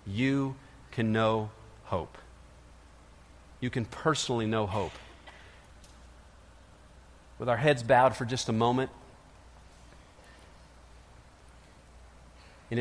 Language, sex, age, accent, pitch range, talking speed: English, male, 40-59, American, 85-120 Hz, 85 wpm